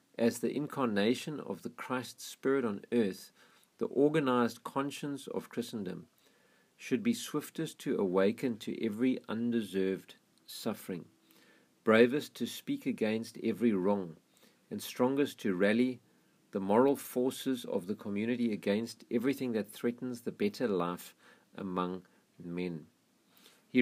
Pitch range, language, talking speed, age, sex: 105-135 Hz, English, 125 wpm, 50-69, male